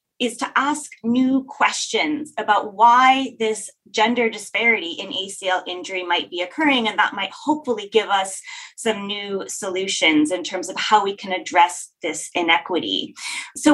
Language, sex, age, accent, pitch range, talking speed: English, female, 20-39, American, 195-275 Hz, 155 wpm